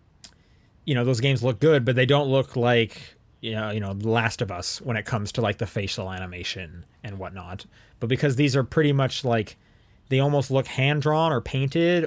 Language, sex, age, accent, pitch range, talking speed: English, male, 20-39, American, 105-140 Hz, 210 wpm